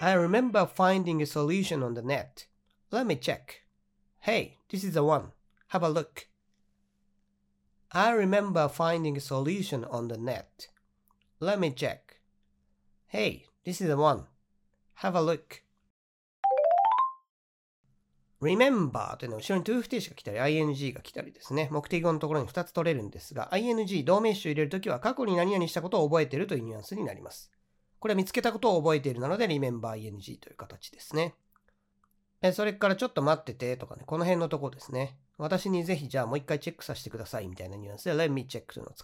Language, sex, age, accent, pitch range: Japanese, male, 40-59, native, 115-185 Hz